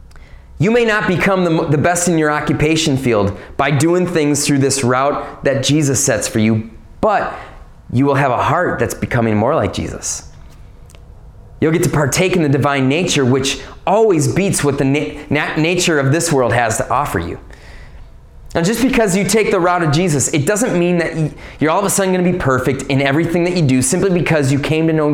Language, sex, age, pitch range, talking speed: English, male, 20-39, 130-175 Hz, 210 wpm